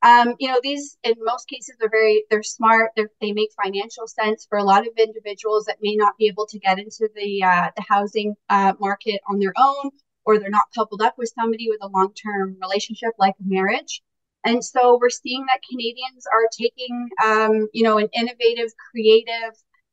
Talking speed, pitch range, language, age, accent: 195 wpm, 205-235 Hz, English, 30-49, American